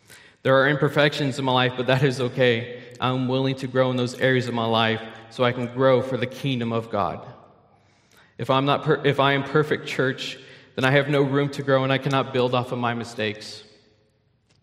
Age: 20-39